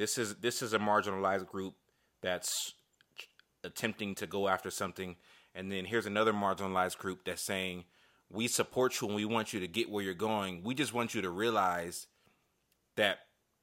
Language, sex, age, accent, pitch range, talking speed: English, male, 30-49, American, 95-115 Hz, 175 wpm